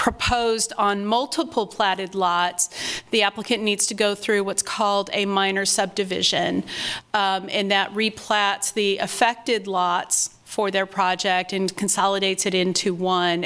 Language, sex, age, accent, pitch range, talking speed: English, female, 40-59, American, 190-210 Hz, 140 wpm